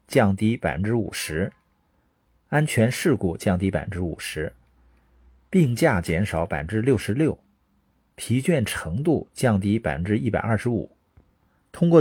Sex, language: male, Chinese